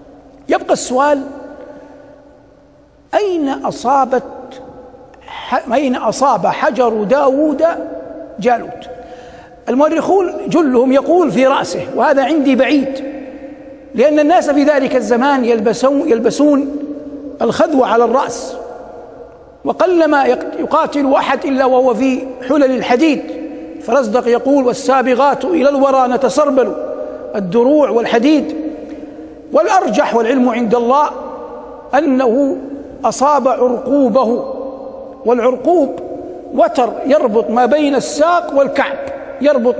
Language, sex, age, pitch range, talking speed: Arabic, male, 60-79, 255-295 Hz, 90 wpm